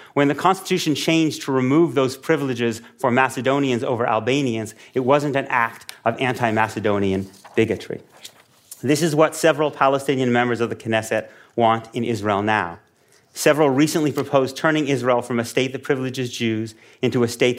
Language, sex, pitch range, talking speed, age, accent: English, male, 110-140 Hz, 155 wpm, 30-49, American